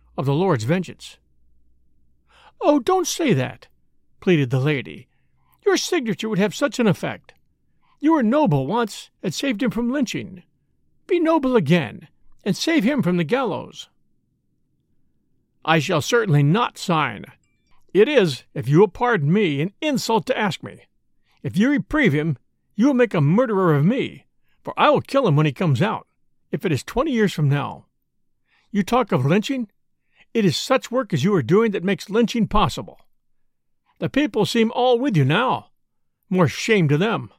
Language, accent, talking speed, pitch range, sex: English, American, 170 wpm, 155-235 Hz, male